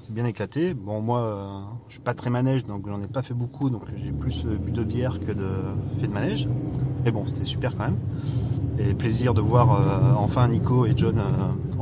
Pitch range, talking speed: 115-135 Hz, 225 wpm